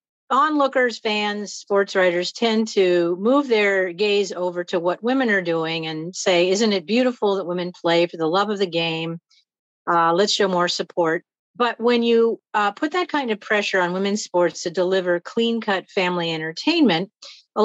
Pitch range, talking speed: 170-220 Hz, 175 wpm